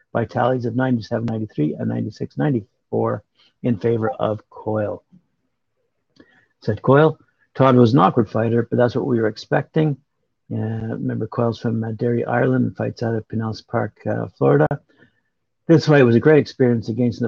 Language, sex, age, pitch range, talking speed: English, male, 60-79, 115-135 Hz, 160 wpm